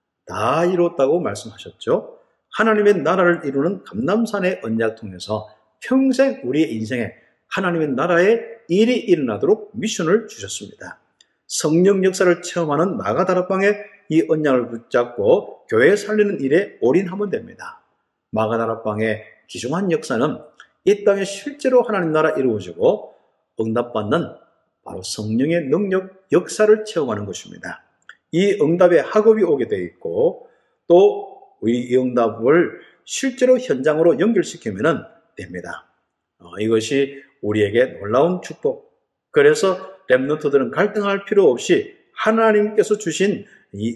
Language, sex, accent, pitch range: Korean, male, native, 155-250 Hz